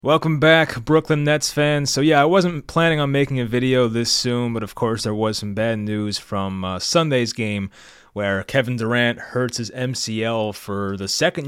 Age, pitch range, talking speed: 20-39, 110-135 Hz, 195 wpm